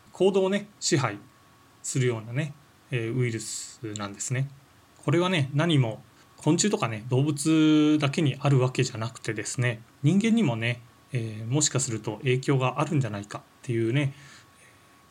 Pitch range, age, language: 115-145 Hz, 20-39, Japanese